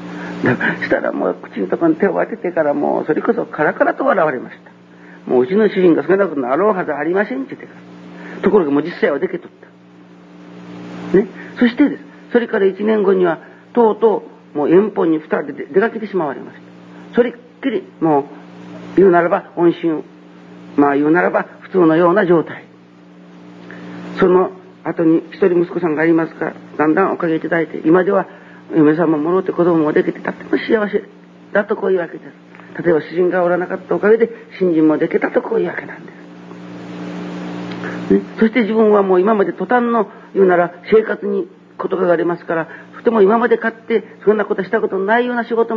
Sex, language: male, Japanese